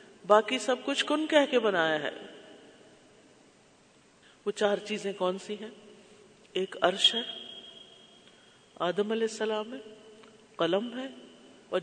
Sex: female